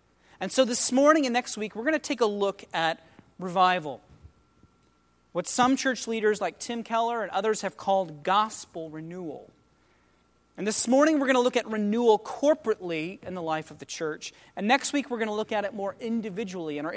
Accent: American